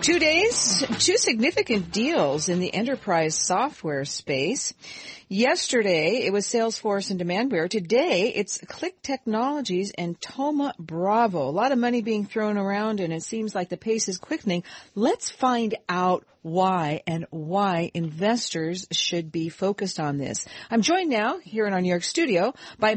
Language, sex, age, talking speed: English, female, 50-69, 155 wpm